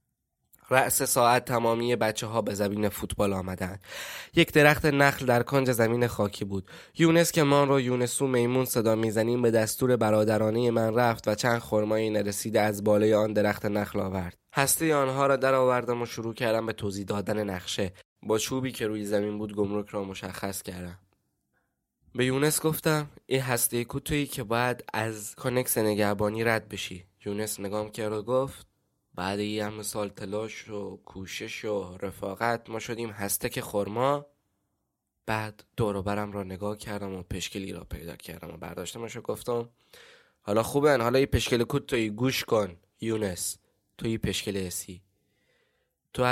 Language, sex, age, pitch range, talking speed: Persian, male, 20-39, 100-125 Hz, 155 wpm